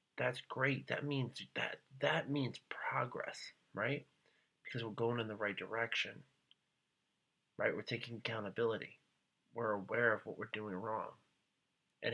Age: 30-49